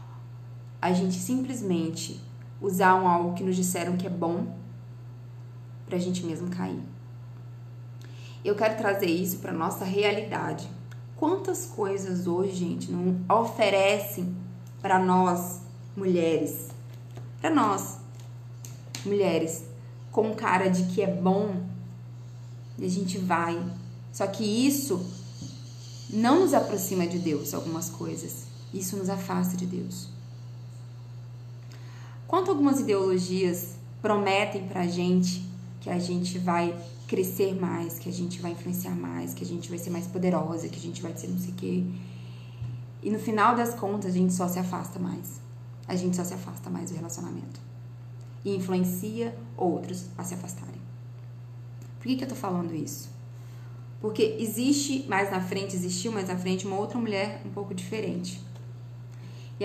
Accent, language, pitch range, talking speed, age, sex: Brazilian, Portuguese, 120-185 Hz, 140 wpm, 20-39, female